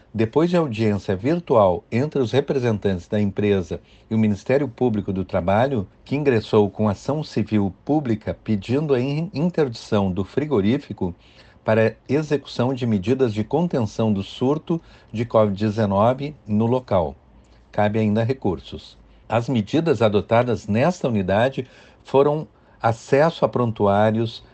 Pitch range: 105-135 Hz